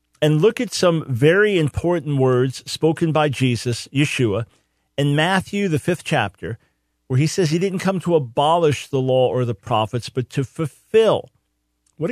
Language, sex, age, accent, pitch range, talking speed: English, male, 50-69, American, 120-155 Hz, 165 wpm